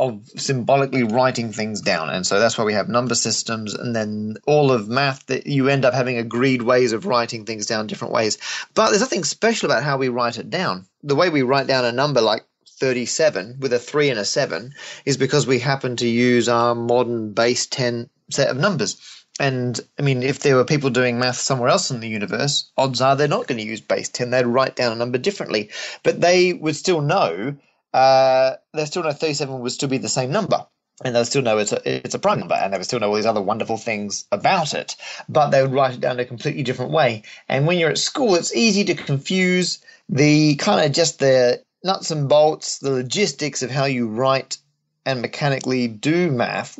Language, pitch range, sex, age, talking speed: English, 120-140 Hz, male, 30-49, 220 wpm